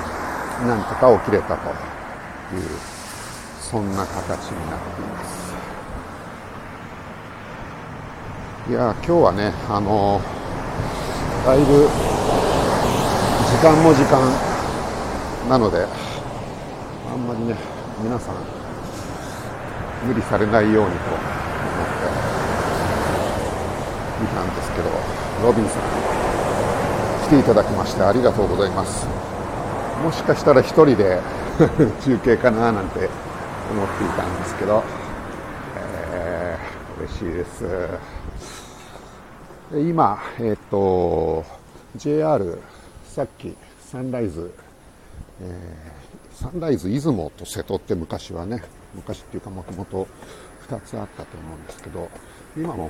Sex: male